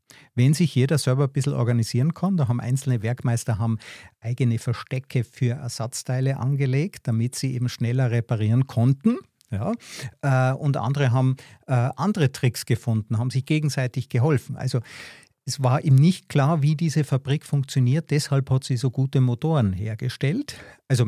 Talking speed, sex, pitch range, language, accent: 150 wpm, male, 120-140 Hz, German, Austrian